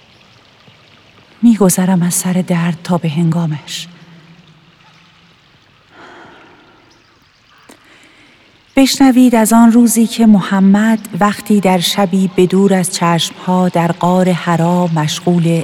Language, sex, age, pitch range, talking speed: Persian, female, 40-59, 175-220 Hz, 95 wpm